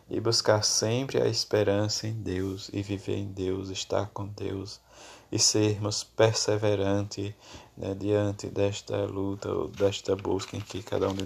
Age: 20-39